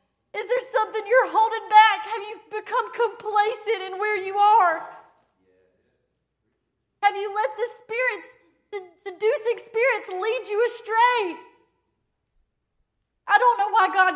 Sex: female